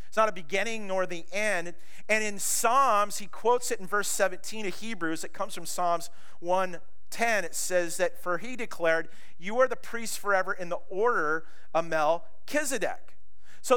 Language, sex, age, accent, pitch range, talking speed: English, male, 40-59, American, 175-230 Hz, 175 wpm